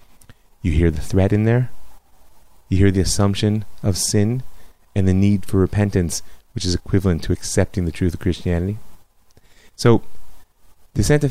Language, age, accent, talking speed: English, 30-49, American, 150 wpm